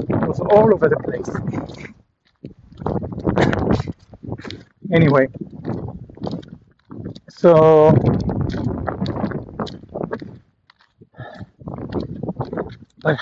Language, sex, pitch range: English, male, 160-205 Hz